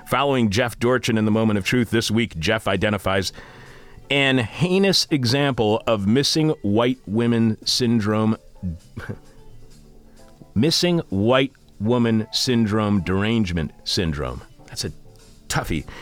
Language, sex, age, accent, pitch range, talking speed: English, male, 40-59, American, 90-120 Hz, 110 wpm